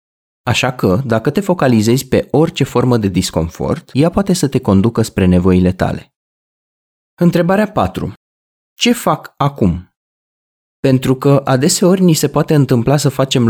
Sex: male